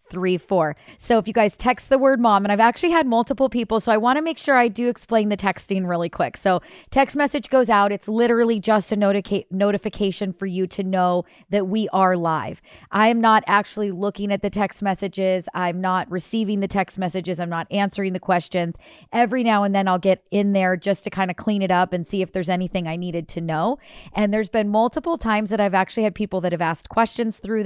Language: English